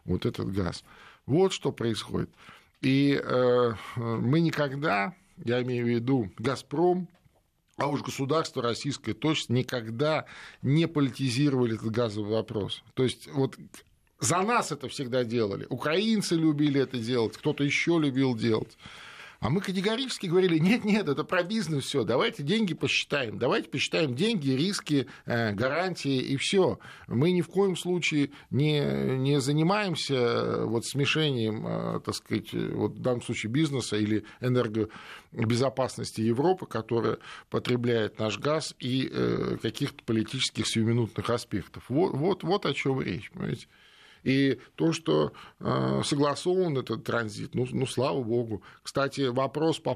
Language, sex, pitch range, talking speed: Russian, male, 115-150 Hz, 135 wpm